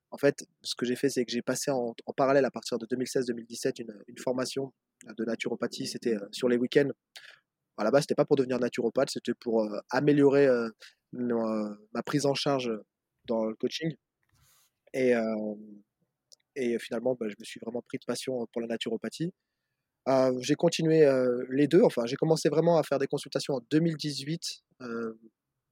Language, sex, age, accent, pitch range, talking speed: French, male, 20-39, French, 120-140 Hz, 190 wpm